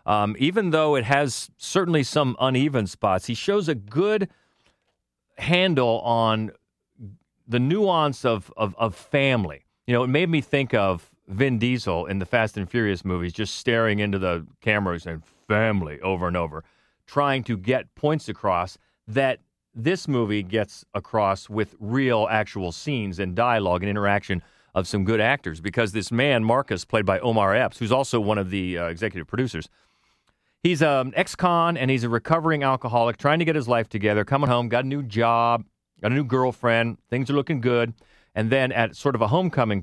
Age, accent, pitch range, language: 40-59, American, 100-135 Hz, English